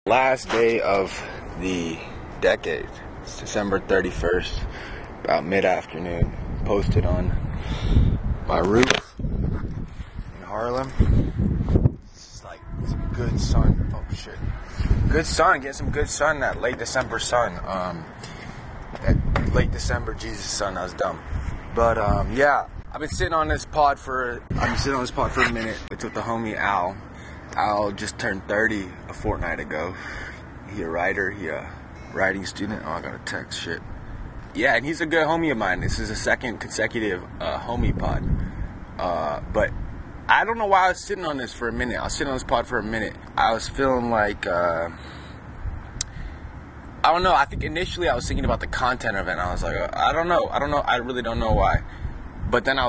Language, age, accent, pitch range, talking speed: English, 20-39, American, 90-120 Hz, 180 wpm